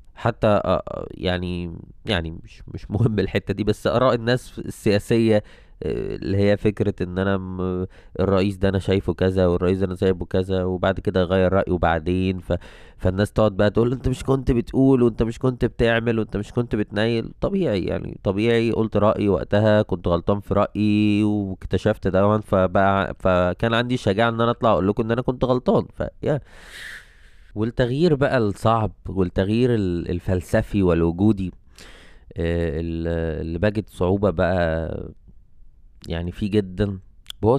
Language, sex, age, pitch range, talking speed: Arabic, male, 20-39, 90-110 Hz, 140 wpm